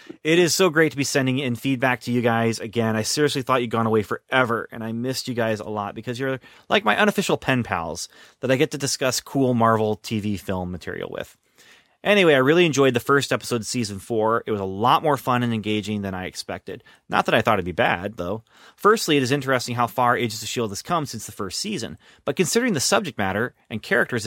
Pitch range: 110-140 Hz